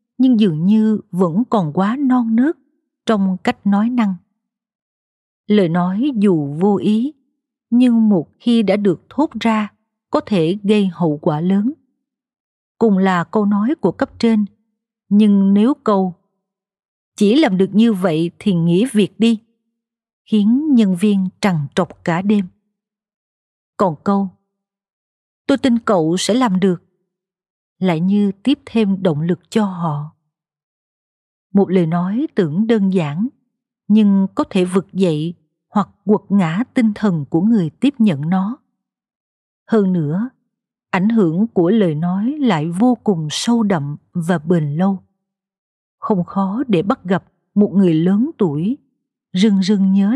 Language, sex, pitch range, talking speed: Vietnamese, female, 185-230 Hz, 145 wpm